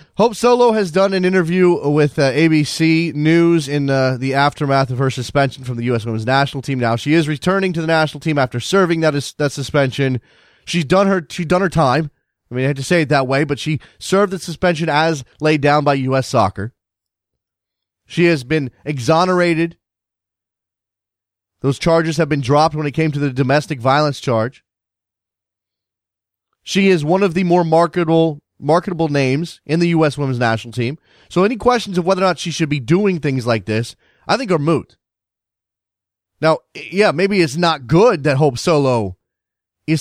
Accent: American